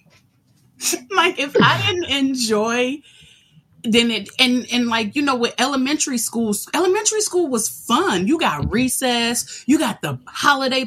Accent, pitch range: American, 175-280 Hz